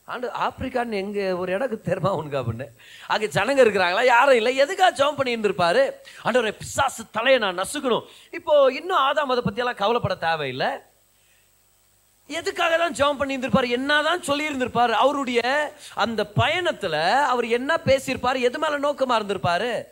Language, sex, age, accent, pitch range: Tamil, male, 30-49, native, 205-285 Hz